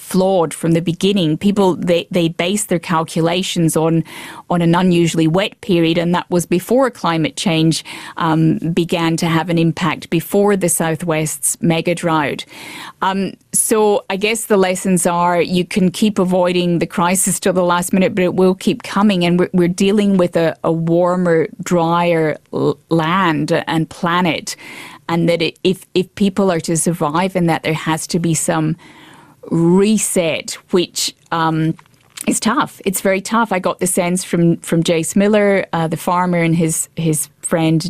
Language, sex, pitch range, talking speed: English, female, 165-185 Hz, 170 wpm